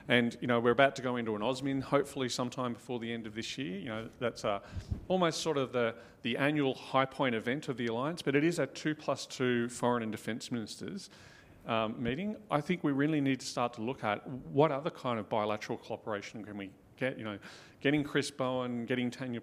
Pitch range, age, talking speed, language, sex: 110-135 Hz, 40-59, 225 wpm, English, male